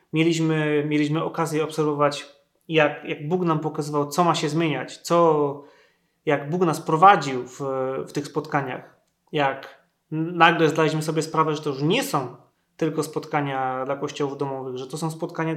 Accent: native